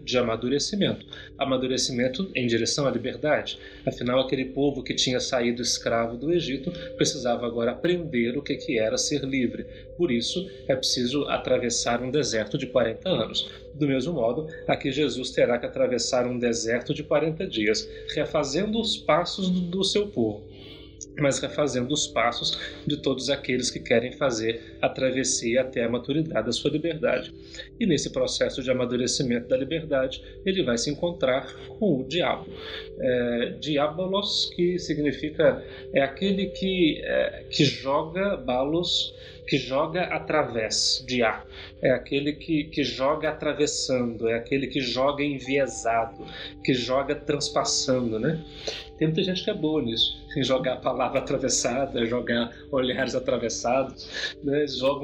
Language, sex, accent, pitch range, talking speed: Portuguese, male, Brazilian, 125-160 Hz, 140 wpm